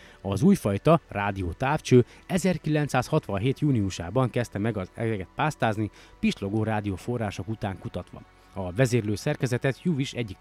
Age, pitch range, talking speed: 30-49, 100-145 Hz, 120 wpm